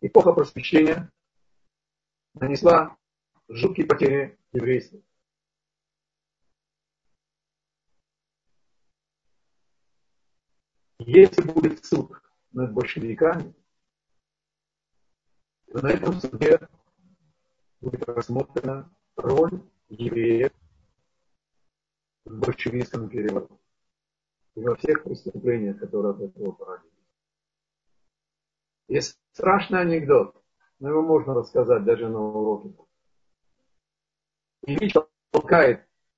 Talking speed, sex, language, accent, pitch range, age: 70 wpm, male, Russian, native, 140-215 Hz, 50-69